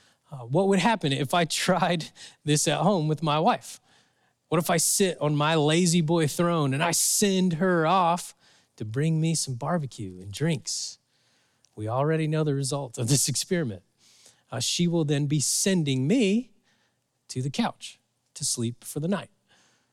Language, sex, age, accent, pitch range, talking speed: English, male, 20-39, American, 125-180 Hz, 170 wpm